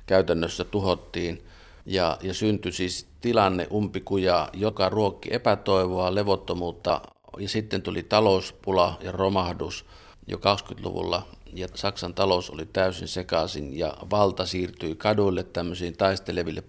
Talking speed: 115 wpm